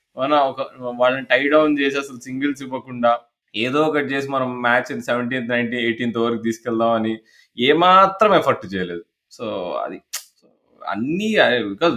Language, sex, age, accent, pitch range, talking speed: Telugu, male, 20-39, native, 110-145 Hz, 125 wpm